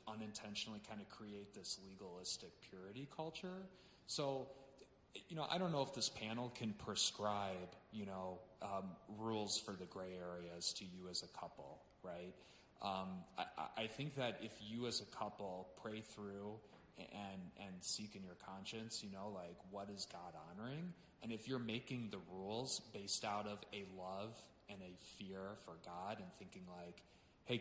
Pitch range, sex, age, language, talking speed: 95-115 Hz, male, 30-49, English, 170 wpm